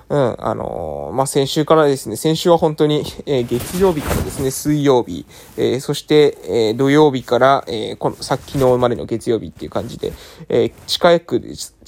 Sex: male